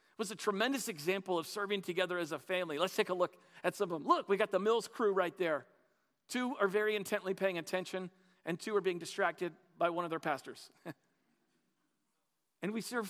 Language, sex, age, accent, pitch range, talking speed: English, male, 40-59, American, 170-215 Hz, 205 wpm